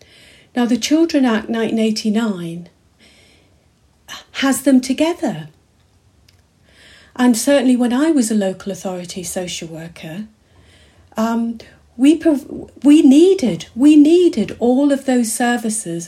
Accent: British